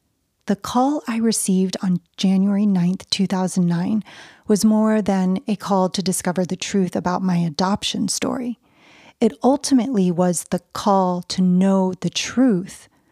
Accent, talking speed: American, 135 wpm